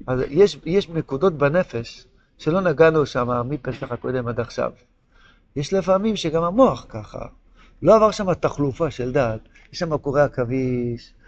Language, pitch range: Hebrew, 140-185 Hz